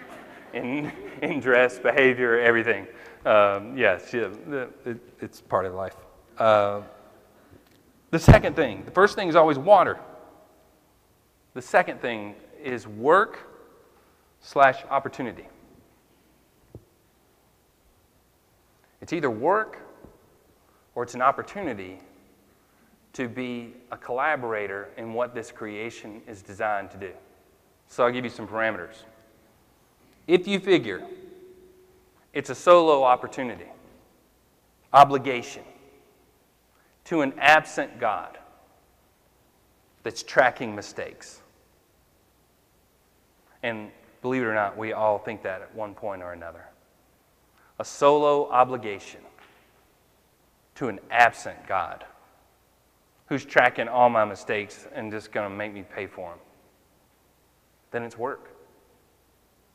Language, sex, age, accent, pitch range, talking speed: English, male, 40-59, American, 105-140 Hz, 105 wpm